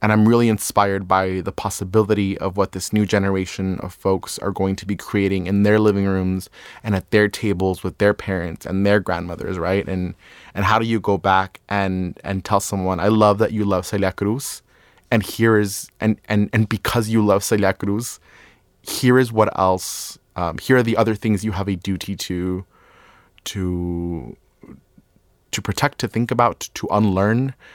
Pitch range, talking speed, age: 95-105 Hz, 185 wpm, 20-39